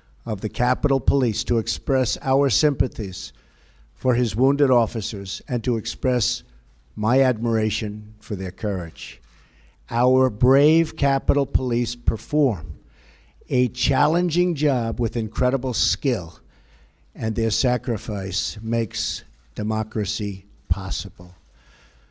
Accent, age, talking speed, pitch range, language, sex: American, 50-69, 100 wpm, 90-130 Hz, English, male